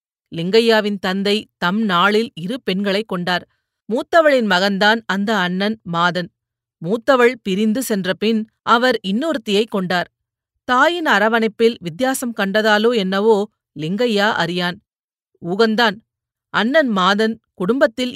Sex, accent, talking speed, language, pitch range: female, native, 100 wpm, Tamil, 185-230 Hz